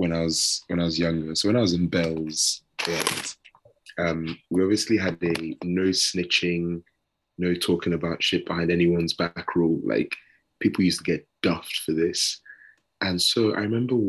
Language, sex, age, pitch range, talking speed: English, male, 20-39, 85-105 Hz, 180 wpm